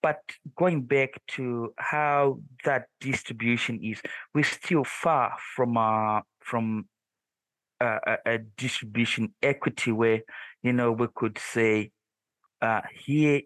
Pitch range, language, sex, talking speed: 120-155 Hz, English, male, 120 wpm